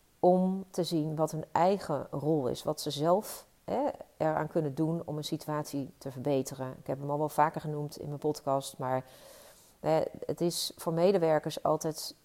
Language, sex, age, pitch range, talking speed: Dutch, female, 40-59, 150-180 Hz, 170 wpm